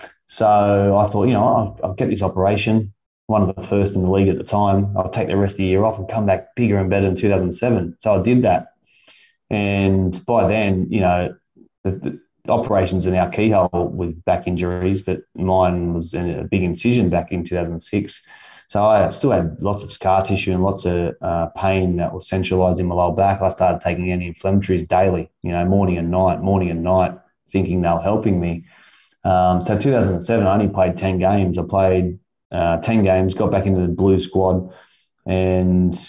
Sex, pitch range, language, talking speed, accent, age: male, 90-100 Hz, English, 205 wpm, Australian, 20-39